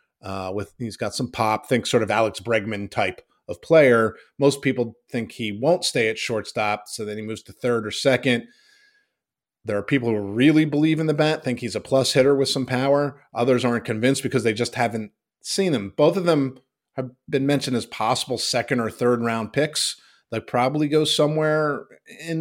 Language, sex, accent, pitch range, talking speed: English, male, American, 115-135 Hz, 200 wpm